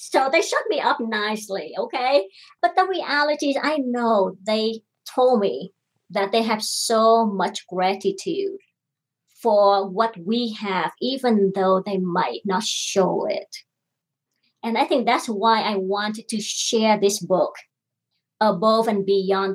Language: English